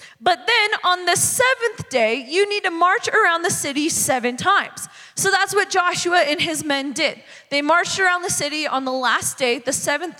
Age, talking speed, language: 20-39, 200 wpm, English